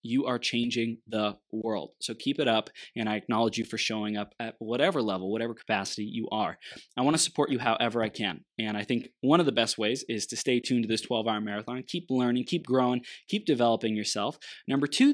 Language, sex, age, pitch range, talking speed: English, male, 20-39, 115-140 Hz, 220 wpm